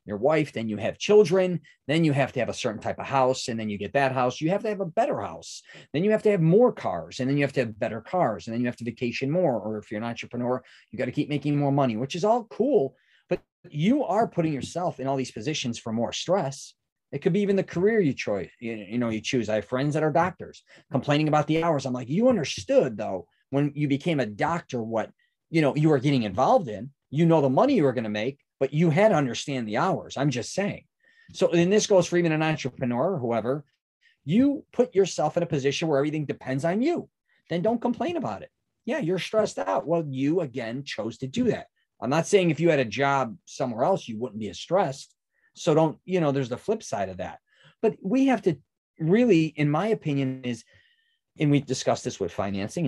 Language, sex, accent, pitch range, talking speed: English, male, American, 125-180 Hz, 240 wpm